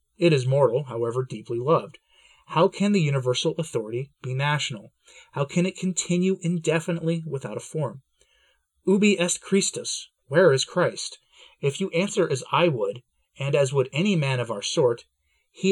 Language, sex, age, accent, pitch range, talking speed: English, male, 30-49, American, 125-170 Hz, 160 wpm